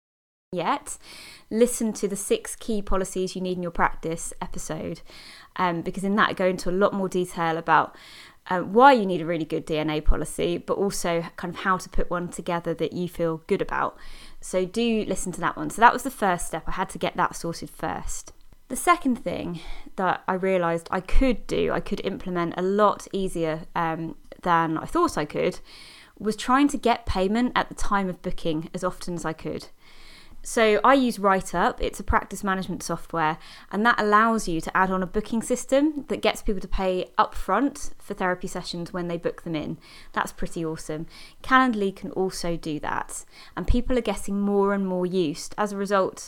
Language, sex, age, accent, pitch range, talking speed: English, female, 20-39, British, 170-215 Hz, 200 wpm